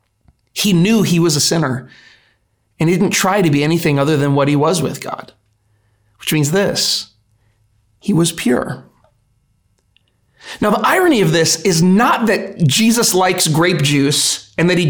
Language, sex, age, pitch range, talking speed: English, male, 30-49, 130-210 Hz, 165 wpm